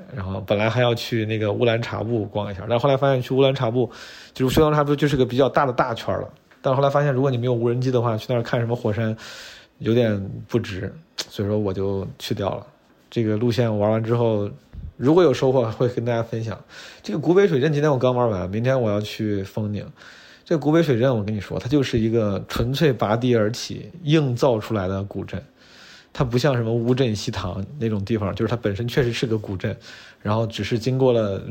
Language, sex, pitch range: Chinese, male, 110-135 Hz